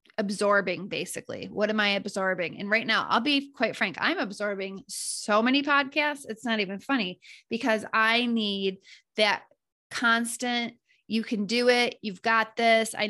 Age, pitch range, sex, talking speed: 20-39, 195-230 Hz, female, 160 wpm